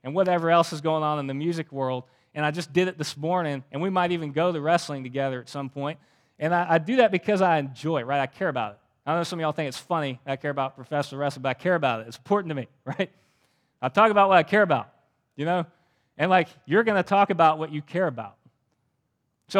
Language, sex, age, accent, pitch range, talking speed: English, male, 30-49, American, 135-185 Hz, 265 wpm